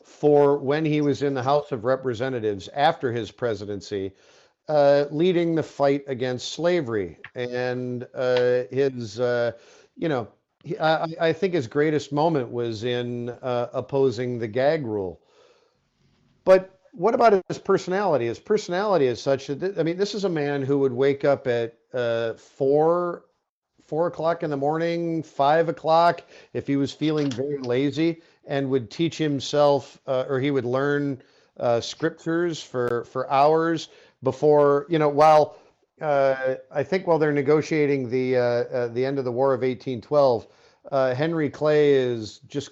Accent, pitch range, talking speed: American, 125-155 Hz, 160 wpm